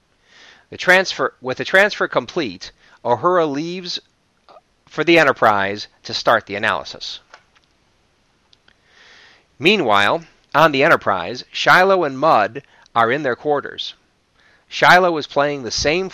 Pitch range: 120-170 Hz